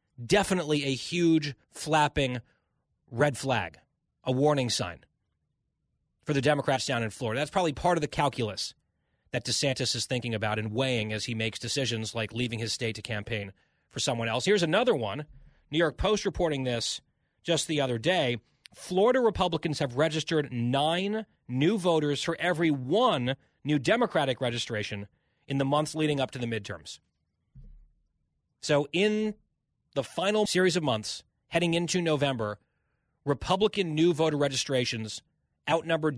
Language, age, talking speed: English, 30-49, 150 wpm